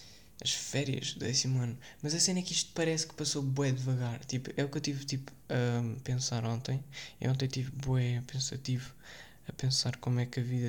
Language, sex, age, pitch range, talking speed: Portuguese, male, 20-39, 125-140 Hz, 230 wpm